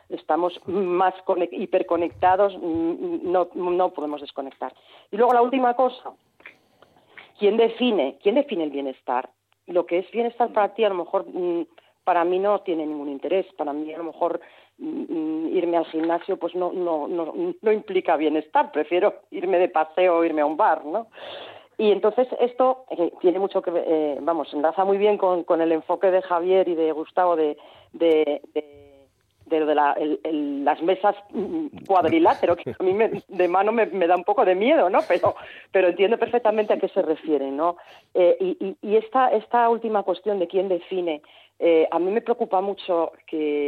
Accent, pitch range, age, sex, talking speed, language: Spanish, 155-205 Hz, 40-59, female, 175 wpm, Spanish